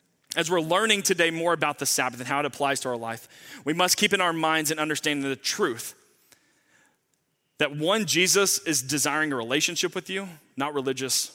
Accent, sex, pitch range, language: American, male, 130-160 Hz, English